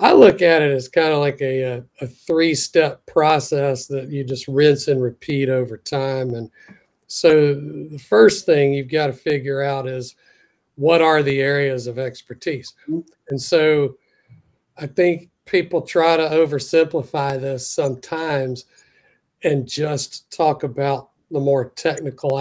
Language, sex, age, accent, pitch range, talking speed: English, male, 50-69, American, 135-160 Hz, 145 wpm